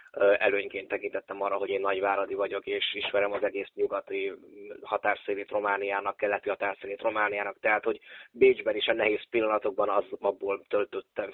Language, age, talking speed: Hungarian, 20-39, 145 wpm